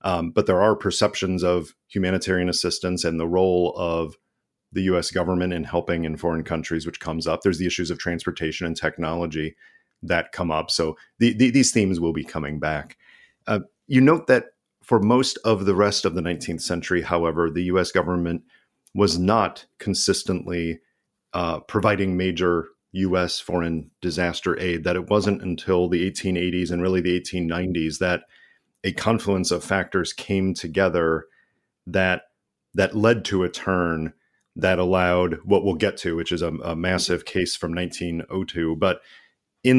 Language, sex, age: English, male, 40-59